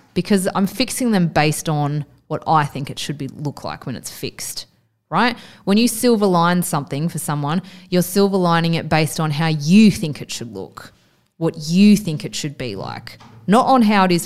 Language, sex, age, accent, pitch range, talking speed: English, female, 20-39, Australian, 155-185 Hz, 205 wpm